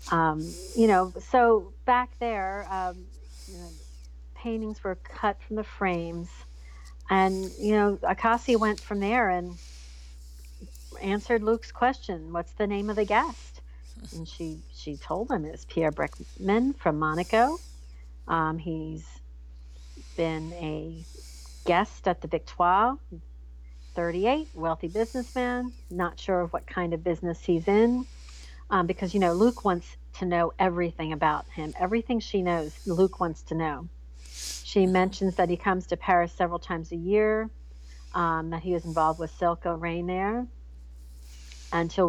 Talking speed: 145 wpm